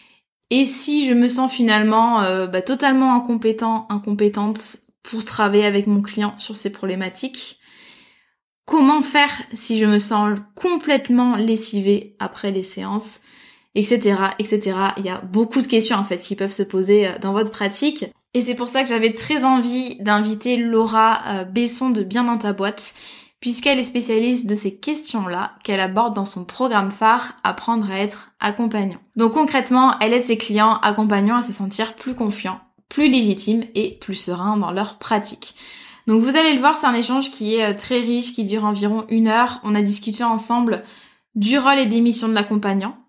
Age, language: 20-39, French